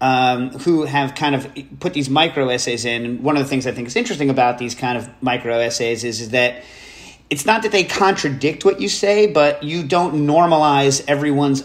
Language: English